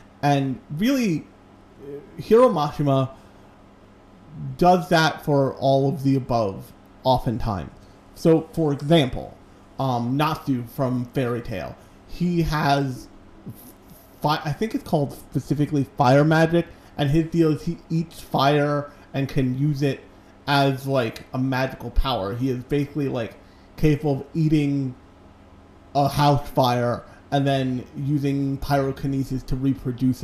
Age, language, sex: 30-49, English, male